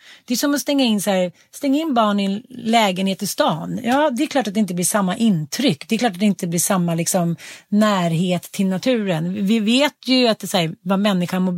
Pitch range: 185-245 Hz